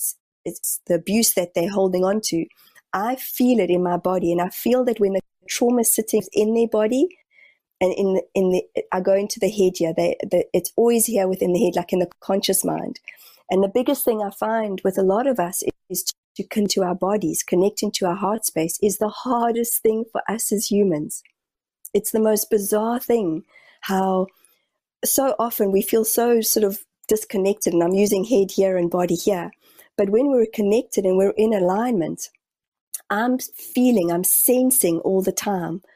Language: English